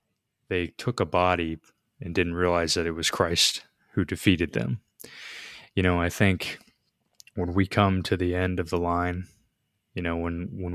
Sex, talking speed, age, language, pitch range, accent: male, 175 wpm, 20-39, English, 85-95 Hz, American